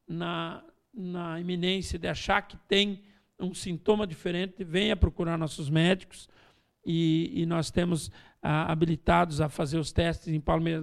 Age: 50-69